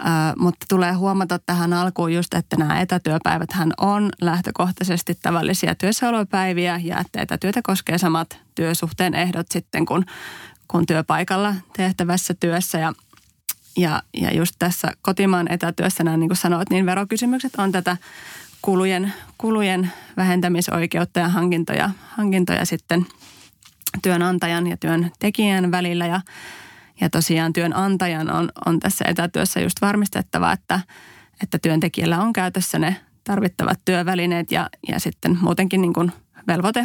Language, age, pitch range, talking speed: Finnish, 20-39, 170-190 Hz, 125 wpm